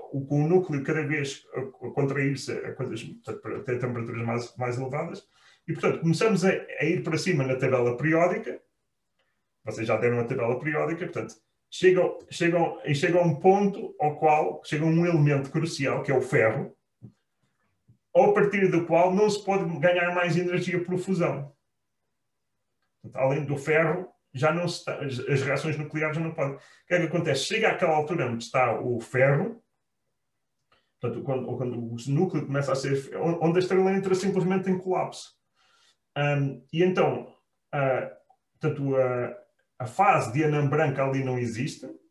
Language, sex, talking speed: Portuguese, male, 160 wpm